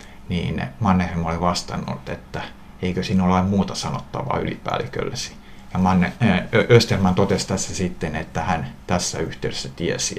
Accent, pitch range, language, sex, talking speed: native, 85-100 Hz, Finnish, male, 125 wpm